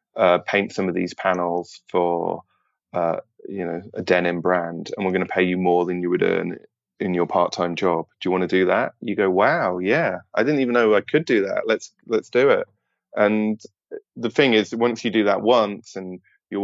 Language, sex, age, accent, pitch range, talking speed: English, male, 20-39, British, 95-120 Hz, 220 wpm